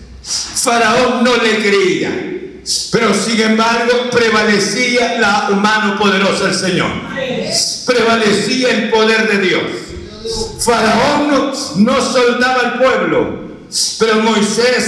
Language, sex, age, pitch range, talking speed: Spanish, male, 60-79, 220-245 Hz, 105 wpm